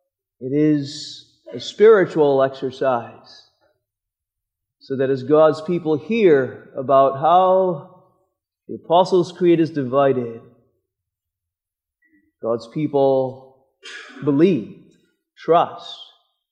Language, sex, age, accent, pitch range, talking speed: English, male, 30-49, American, 140-185 Hz, 80 wpm